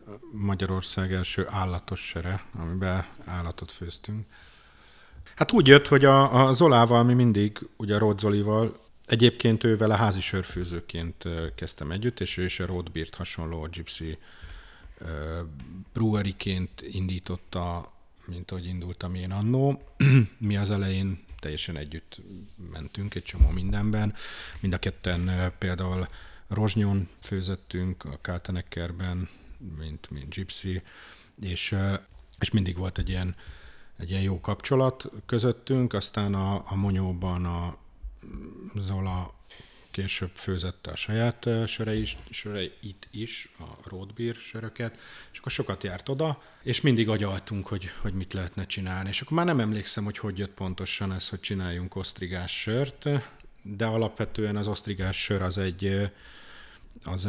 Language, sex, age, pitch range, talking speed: Hungarian, male, 50-69, 90-110 Hz, 130 wpm